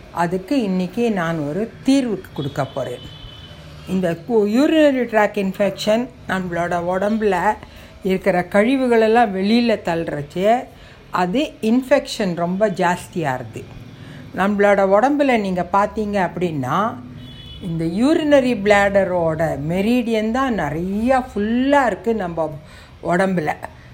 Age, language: 60-79, Tamil